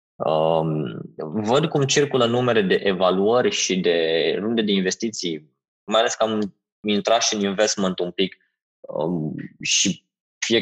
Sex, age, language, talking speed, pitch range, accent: male, 20-39, Romanian, 130 wpm, 100-135 Hz, native